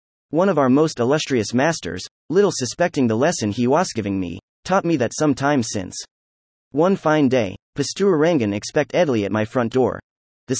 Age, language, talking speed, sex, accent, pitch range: 30-49, English, 180 wpm, male, American, 110-160 Hz